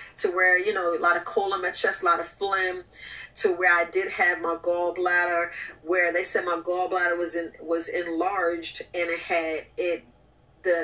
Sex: female